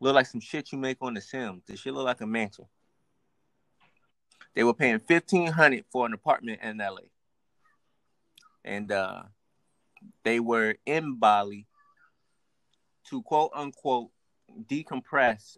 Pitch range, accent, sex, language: 105-130 Hz, American, male, English